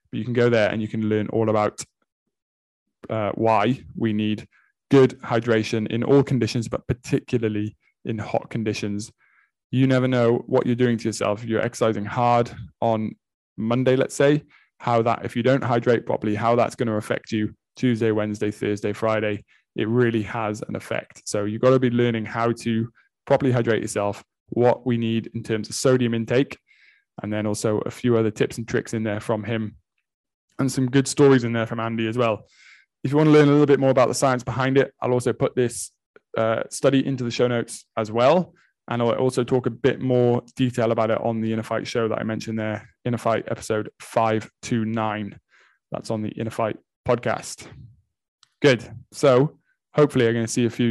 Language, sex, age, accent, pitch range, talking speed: English, male, 20-39, British, 110-125 Hz, 200 wpm